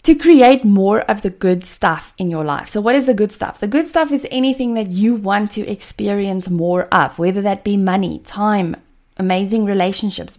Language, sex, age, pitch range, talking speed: English, female, 20-39, 180-235 Hz, 200 wpm